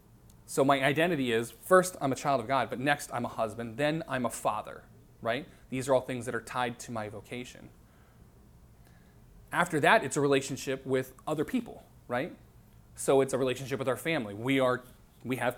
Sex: male